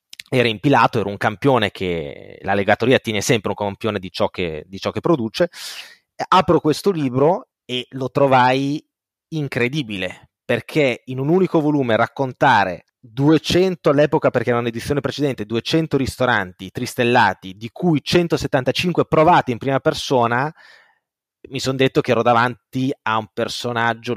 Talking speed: 140 wpm